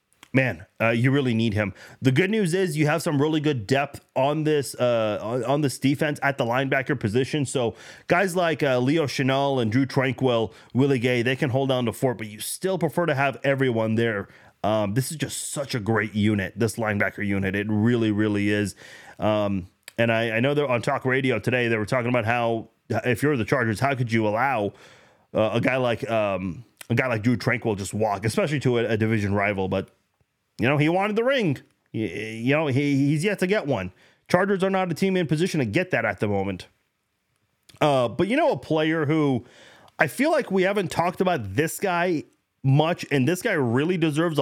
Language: English